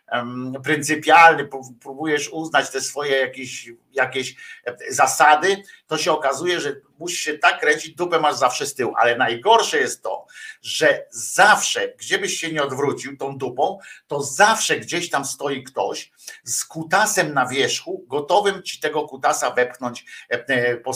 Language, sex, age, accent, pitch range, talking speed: Polish, male, 50-69, native, 140-195 Hz, 145 wpm